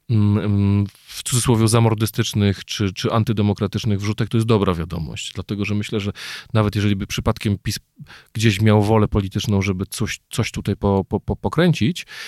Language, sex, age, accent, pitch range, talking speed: Polish, male, 40-59, native, 95-115 Hz, 150 wpm